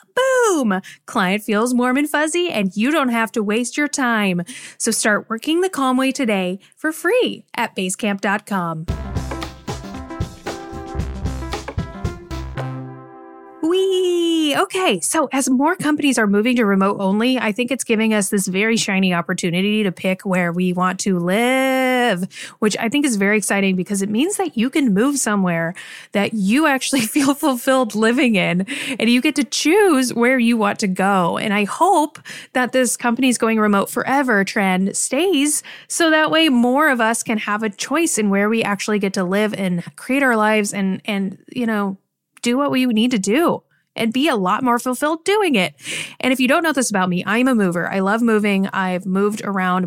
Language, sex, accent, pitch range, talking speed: English, female, American, 195-260 Hz, 180 wpm